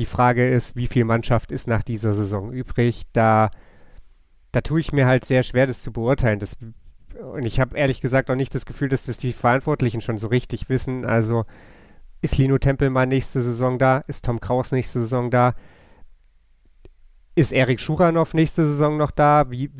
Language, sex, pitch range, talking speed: German, male, 115-135 Hz, 185 wpm